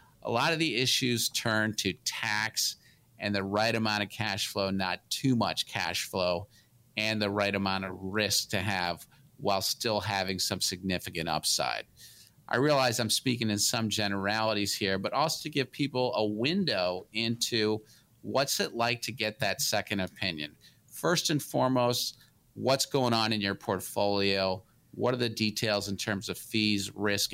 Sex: male